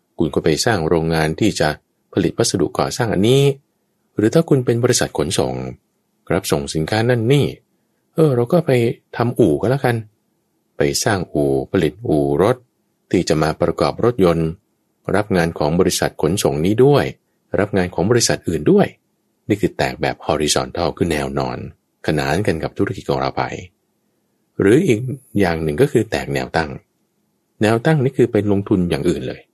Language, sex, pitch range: English, male, 80-120 Hz